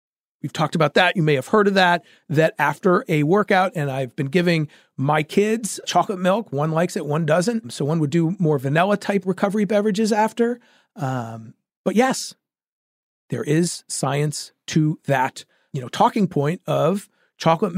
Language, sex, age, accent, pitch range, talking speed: English, male, 40-59, American, 145-200 Hz, 170 wpm